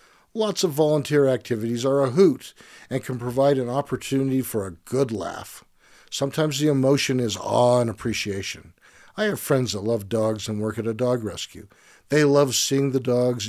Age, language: 50-69, English